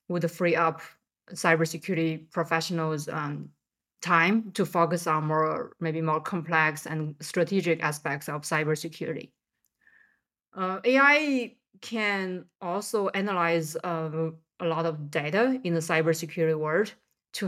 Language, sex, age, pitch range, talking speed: English, female, 20-39, 160-180 Hz, 115 wpm